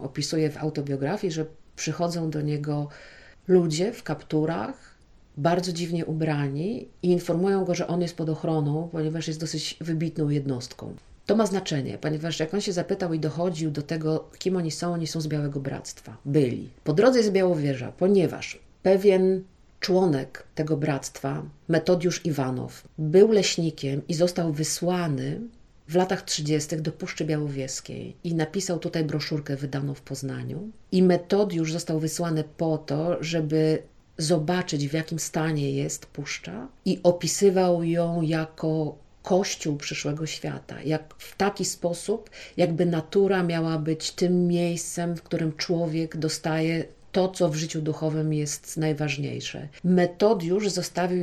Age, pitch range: 40-59, 155-180 Hz